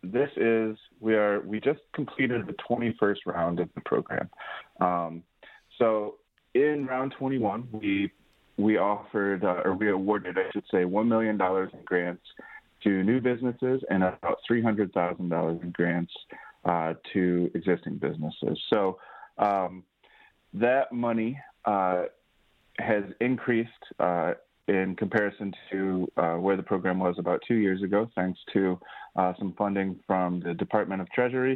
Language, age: English, 30-49